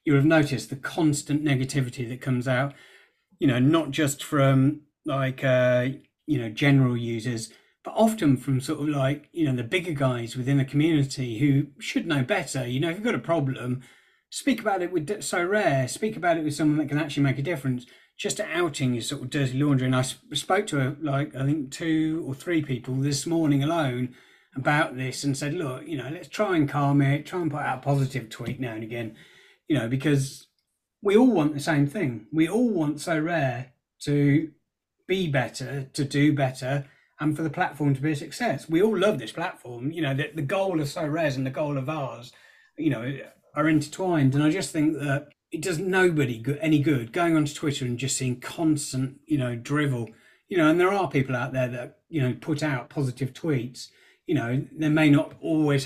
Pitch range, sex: 130-155 Hz, male